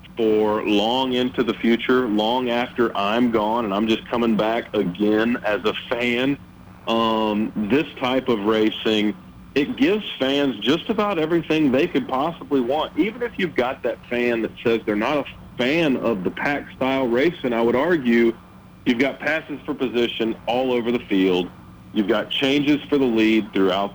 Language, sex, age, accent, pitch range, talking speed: English, male, 40-59, American, 110-140 Hz, 170 wpm